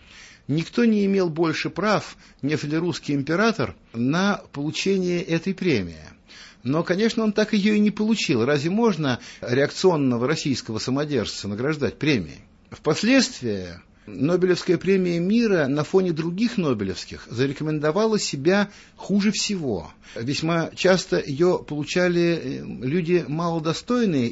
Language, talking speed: Russian, 110 wpm